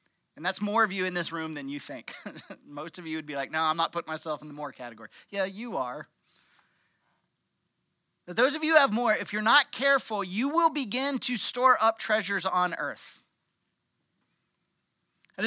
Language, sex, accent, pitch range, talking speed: English, male, American, 180-260 Hz, 195 wpm